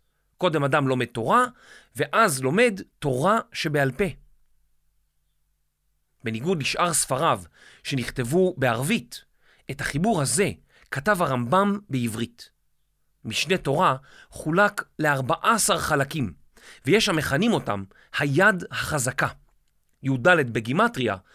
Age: 40-59